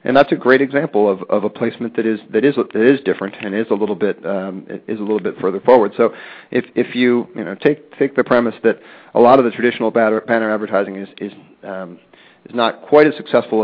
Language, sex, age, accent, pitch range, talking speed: English, male, 40-59, American, 100-120 Hz, 240 wpm